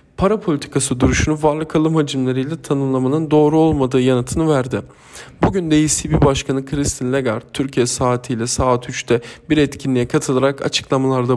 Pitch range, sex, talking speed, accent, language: 130-150 Hz, male, 130 wpm, native, Turkish